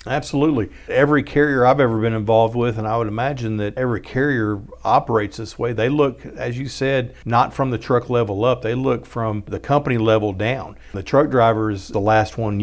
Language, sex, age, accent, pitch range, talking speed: English, male, 50-69, American, 110-130 Hz, 205 wpm